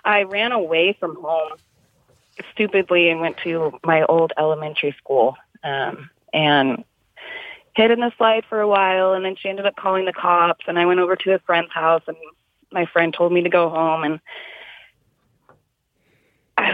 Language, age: English, 30-49